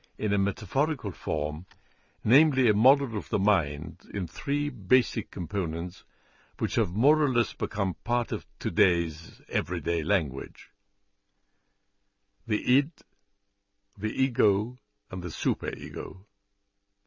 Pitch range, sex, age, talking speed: 95-115 Hz, male, 60-79, 115 wpm